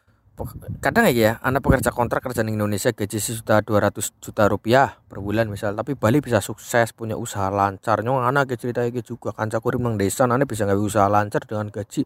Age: 20-39